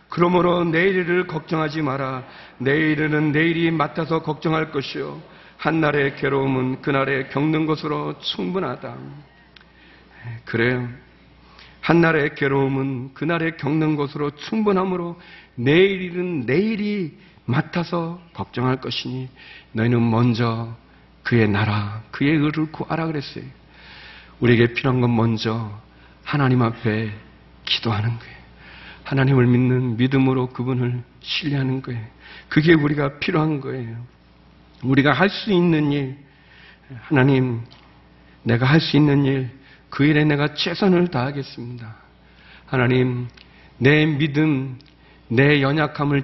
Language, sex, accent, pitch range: Korean, male, native, 120-160 Hz